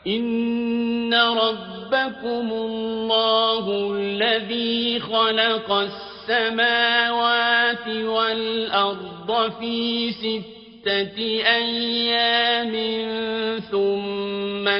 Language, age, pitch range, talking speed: Arabic, 50-69, 200-230 Hz, 45 wpm